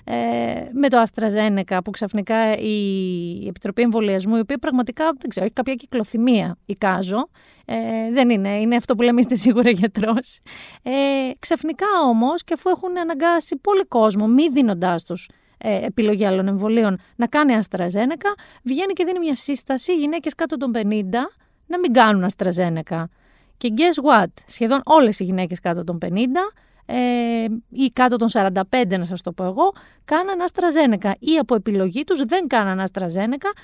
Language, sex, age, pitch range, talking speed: Greek, female, 30-49, 200-290 Hz, 155 wpm